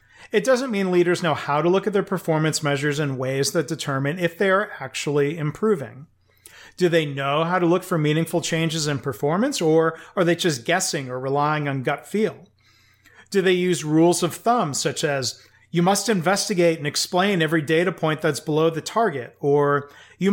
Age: 40-59